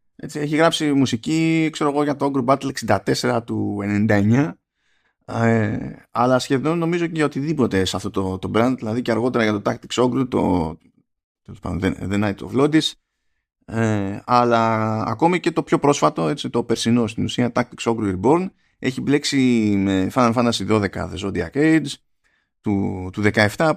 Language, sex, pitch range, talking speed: Greek, male, 105-150 Hz, 165 wpm